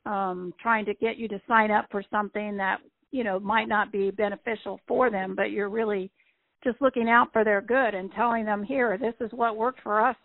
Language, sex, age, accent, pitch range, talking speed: English, female, 50-69, American, 205-230 Hz, 220 wpm